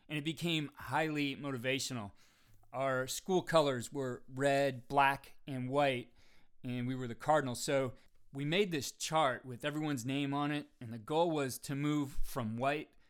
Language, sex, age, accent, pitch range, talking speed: English, male, 30-49, American, 120-145 Hz, 165 wpm